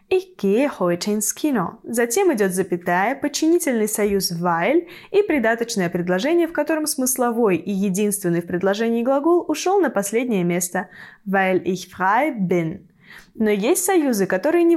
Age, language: 20-39, Russian